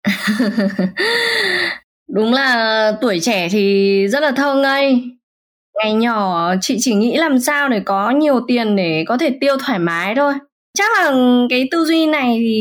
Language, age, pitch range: Vietnamese, 20-39, 195-275 Hz